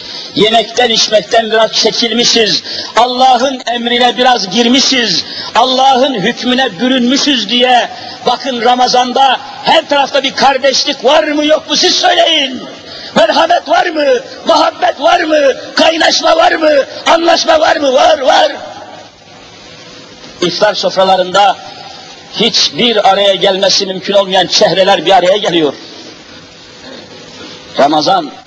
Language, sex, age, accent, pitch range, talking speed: Turkish, male, 50-69, native, 200-295 Hz, 105 wpm